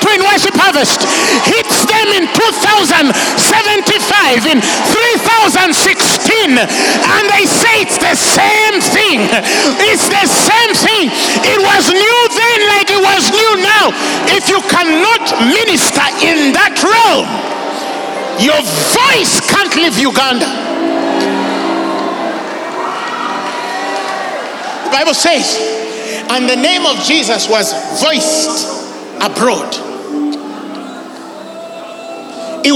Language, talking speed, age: English, 95 wpm, 50-69